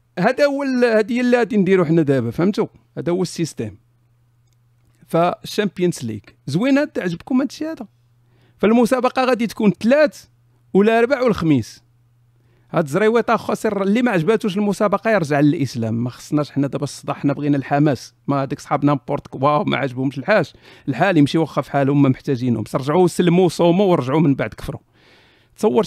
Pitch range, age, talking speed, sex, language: 130-205 Hz, 50-69, 150 wpm, male, Arabic